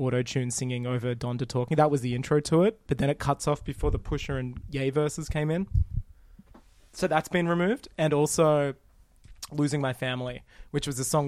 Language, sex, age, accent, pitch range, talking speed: English, male, 20-39, Australian, 125-140 Hz, 200 wpm